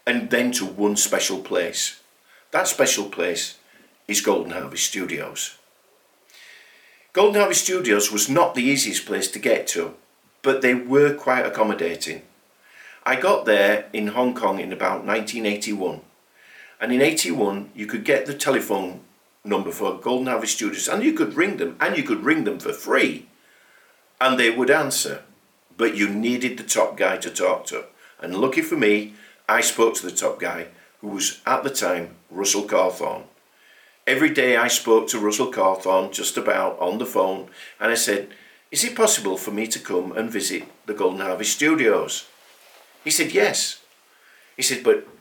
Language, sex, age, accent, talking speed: English, male, 50-69, British, 170 wpm